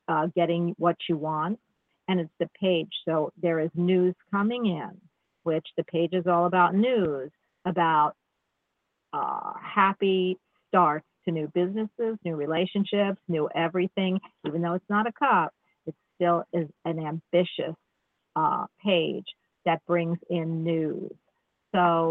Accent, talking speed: American, 140 wpm